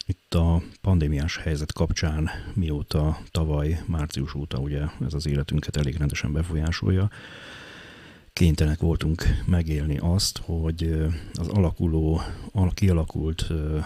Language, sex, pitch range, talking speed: Hungarian, male, 75-90 Hz, 110 wpm